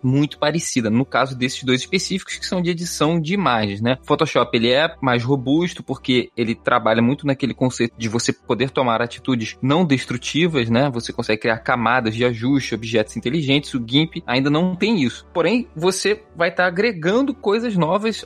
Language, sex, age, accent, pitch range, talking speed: Portuguese, male, 20-39, Brazilian, 125-170 Hz, 185 wpm